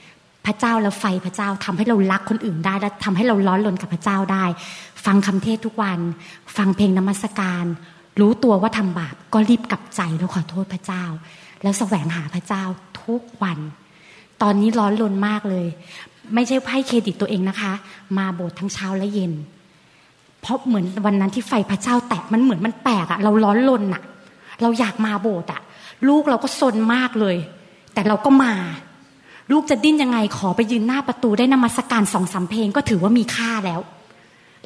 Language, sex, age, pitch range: Thai, female, 20-39, 185-225 Hz